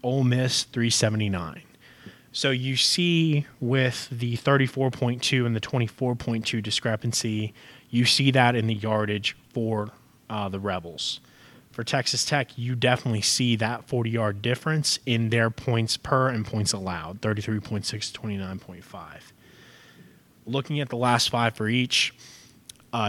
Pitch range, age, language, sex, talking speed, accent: 110-130 Hz, 20-39, English, male, 130 wpm, American